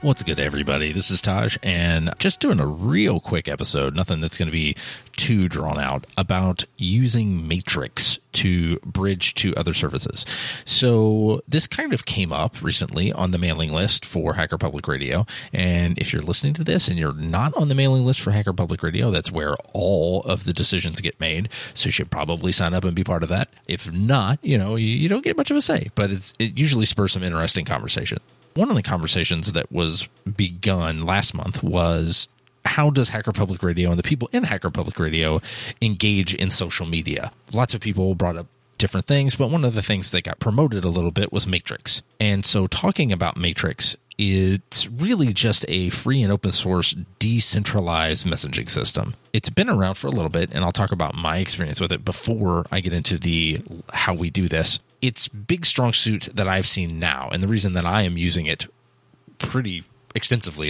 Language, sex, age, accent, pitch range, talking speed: English, male, 30-49, American, 85-120 Hz, 200 wpm